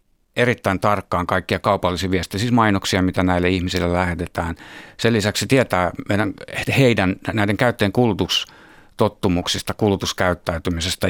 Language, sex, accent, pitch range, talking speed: Finnish, male, native, 90-110 Hz, 110 wpm